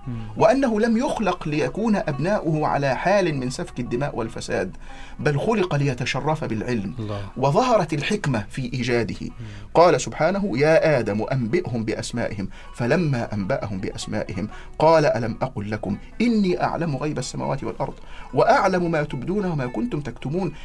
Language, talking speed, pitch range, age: Arabic, 125 wpm, 120-165 Hz, 40-59